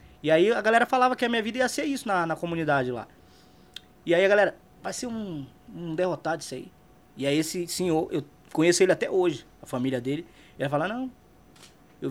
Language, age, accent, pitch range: Portuguese, 20-39, Brazilian, 140-190 Hz